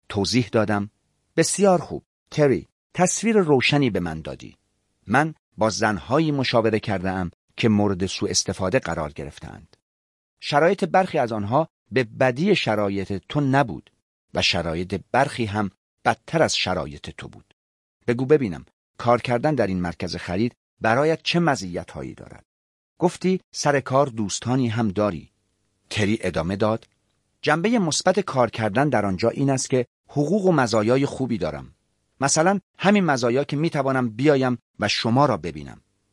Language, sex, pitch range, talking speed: Persian, male, 100-145 Hz, 140 wpm